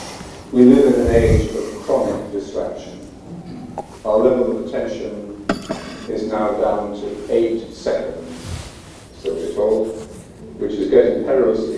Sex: male